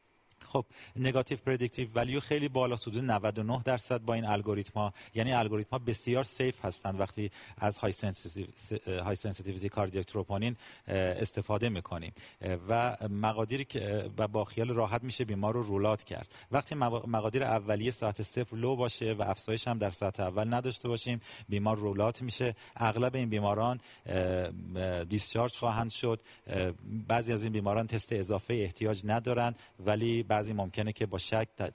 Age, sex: 40-59, male